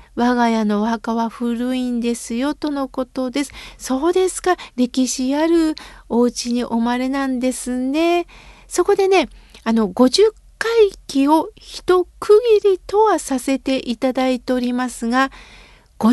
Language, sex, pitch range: Japanese, female, 245-340 Hz